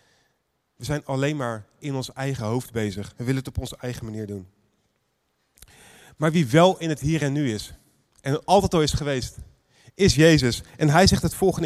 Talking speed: 195 wpm